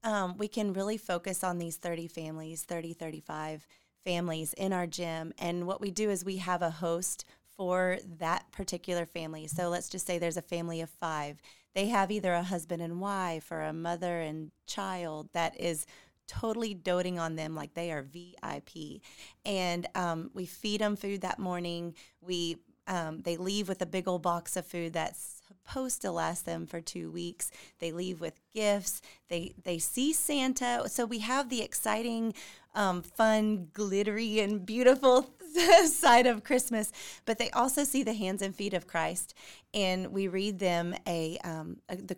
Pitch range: 170-200 Hz